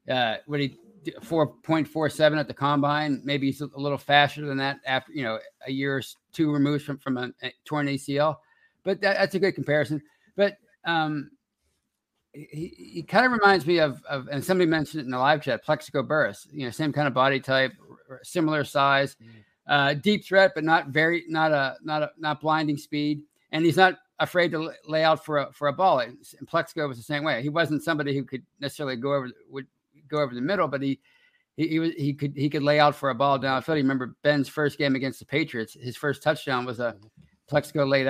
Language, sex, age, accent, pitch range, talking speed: English, male, 50-69, American, 135-155 Hz, 220 wpm